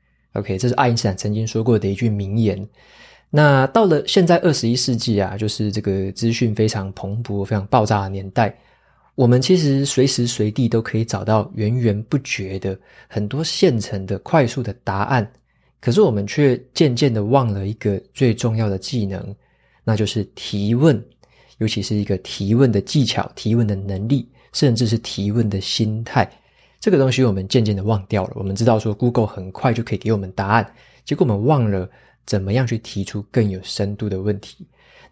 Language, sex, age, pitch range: Chinese, male, 20-39, 100-125 Hz